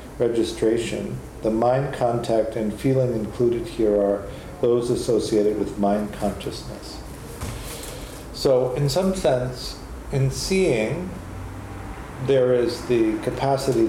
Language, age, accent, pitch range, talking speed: English, 50-69, American, 105-125 Hz, 105 wpm